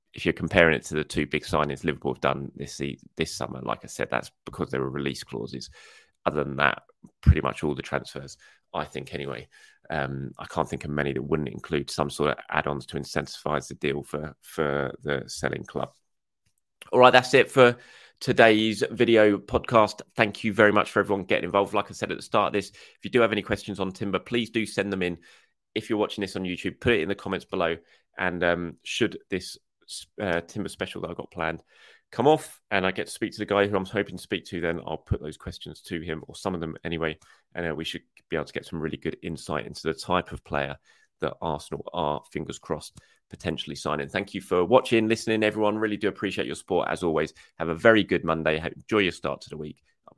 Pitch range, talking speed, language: 75-100 Hz, 230 wpm, English